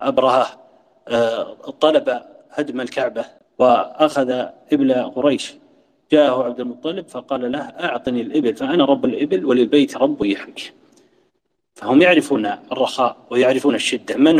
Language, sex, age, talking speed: Arabic, male, 40-59, 110 wpm